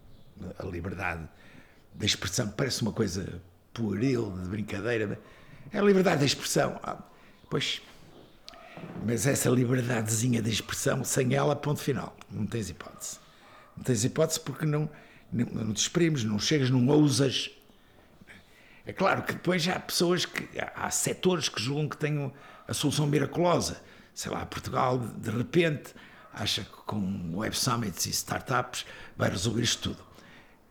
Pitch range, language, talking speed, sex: 110-155 Hz, Portuguese, 150 wpm, male